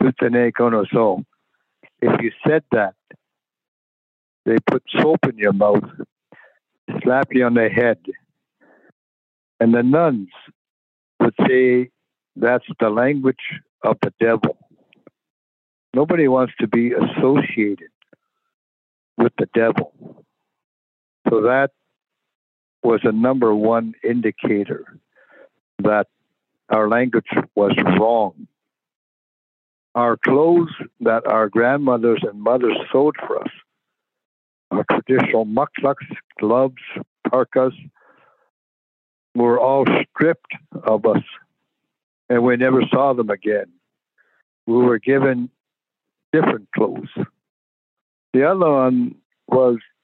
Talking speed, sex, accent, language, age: 95 wpm, male, American, English, 60-79